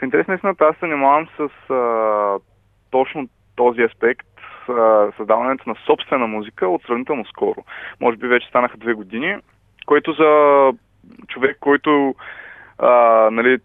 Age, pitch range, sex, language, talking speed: 20-39, 115-150 Hz, male, Bulgarian, 135 wpm